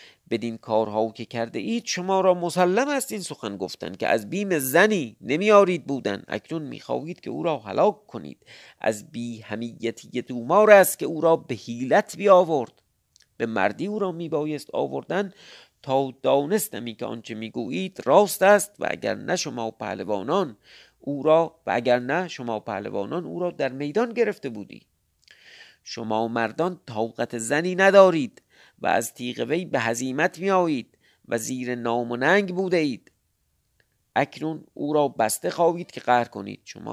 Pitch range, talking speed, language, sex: 115-180 Hz, 155 wpm, Persian, male